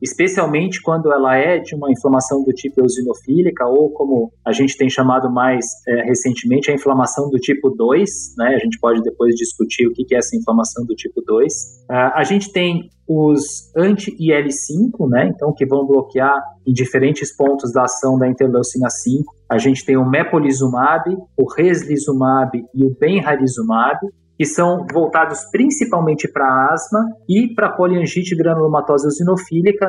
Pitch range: 130-175 Hz